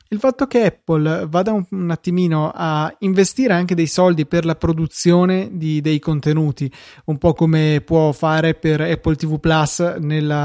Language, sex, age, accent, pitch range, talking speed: Italian, male, 20-39, native, 155-180 Hz, 160 wpm